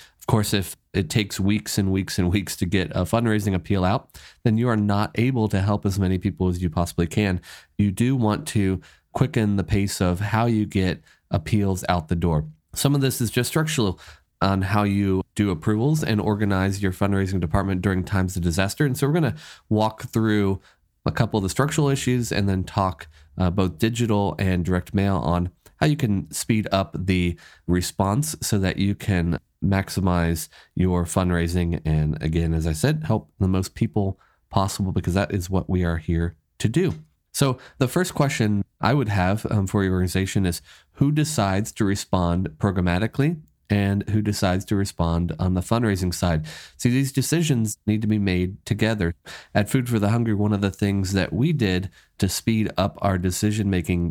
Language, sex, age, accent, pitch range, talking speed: English, male, 30-49, American, 90-110 Hz, 190 wpm